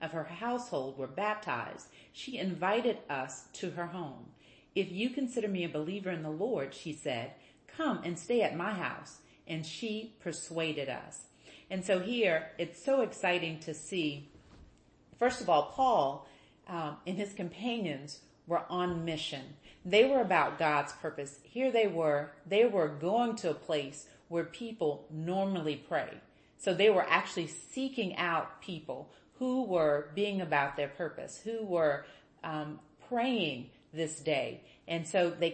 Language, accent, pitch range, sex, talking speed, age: English, American, 150-205 Hz, female, 155 wpm, 40-59